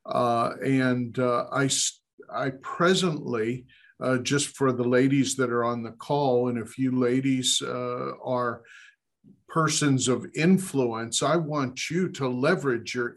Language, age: English, 50-69